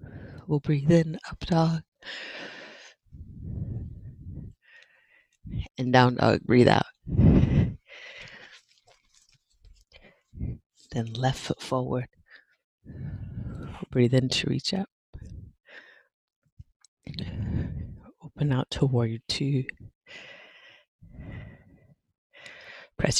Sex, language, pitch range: female, English, 125-180 Hz